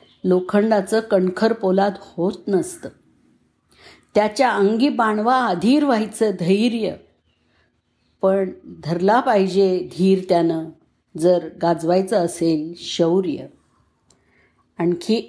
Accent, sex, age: native, female, 50-69